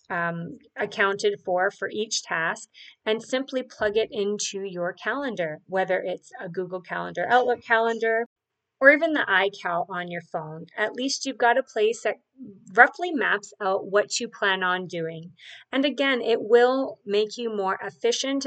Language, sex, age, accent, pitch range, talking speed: English, female, 30-49, American, 195-245 Hz, 160 wpm